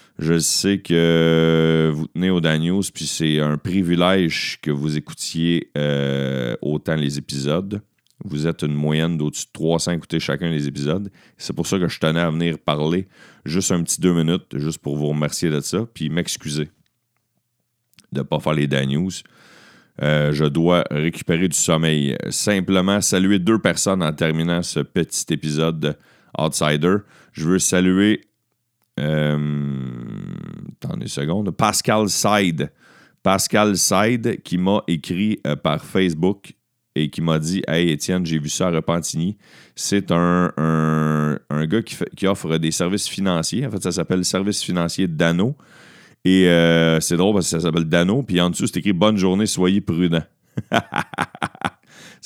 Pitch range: 75-95 Hz